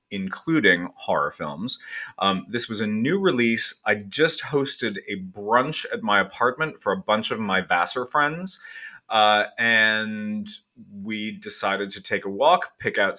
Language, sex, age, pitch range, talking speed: English, male, 30-49, 105-155 Hz, 155 wpm